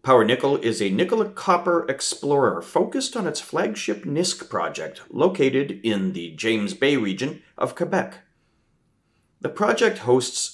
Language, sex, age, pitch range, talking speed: English, male, 40-59, 105-165 Hz, 130 wpm